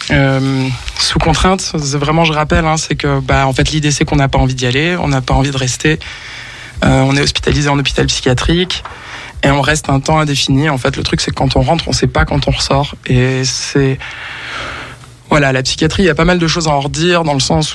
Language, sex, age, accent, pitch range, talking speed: French, male, 20-39, French, 135-160 Hz, 245 wpm